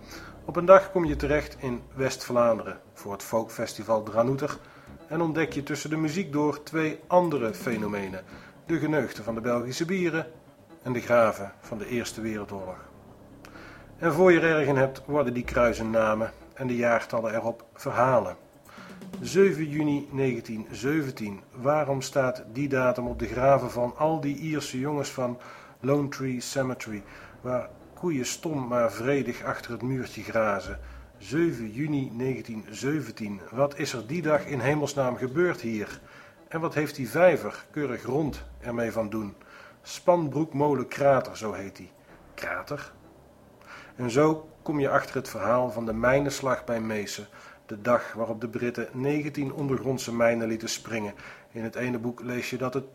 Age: 40-59